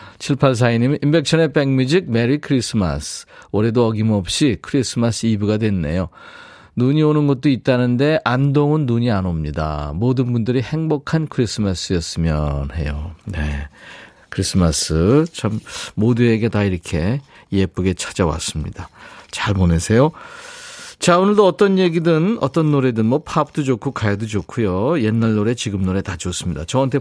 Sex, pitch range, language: male, 100-150 Hz, Korean